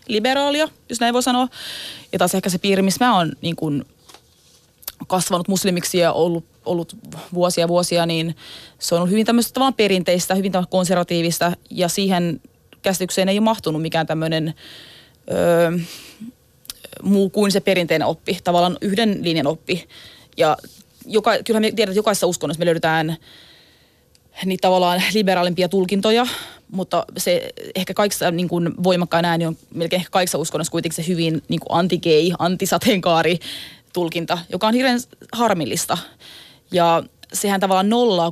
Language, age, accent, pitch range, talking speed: Finnish, 20-39, native, 170-210 Hz, 140 wpm